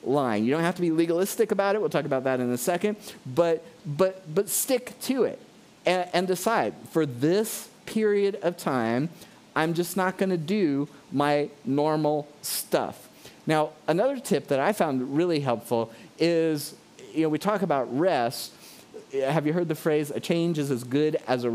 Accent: American